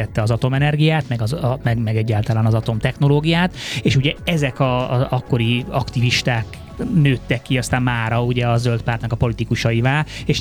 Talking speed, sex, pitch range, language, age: 160 wpm, male, 115-135 Hz, Hungarian, 20-39